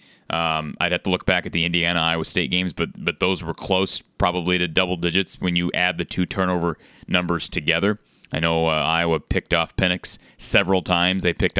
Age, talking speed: 30-49, 200 wpm